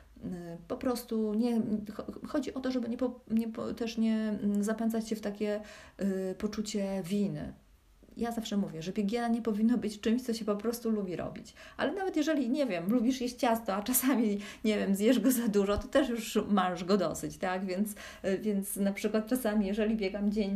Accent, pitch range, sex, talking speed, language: native, 180-225 Hz, female, 195 wpm, Polish